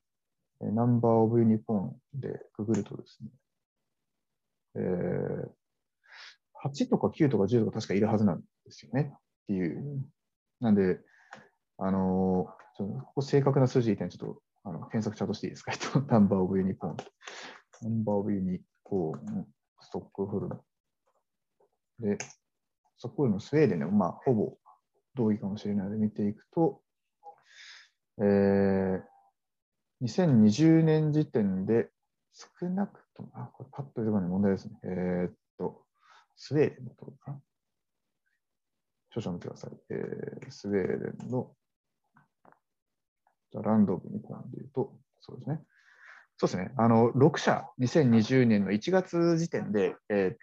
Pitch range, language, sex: 100-135 Hz, Japanese, male